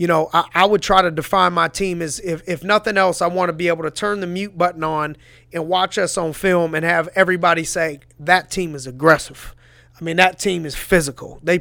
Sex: male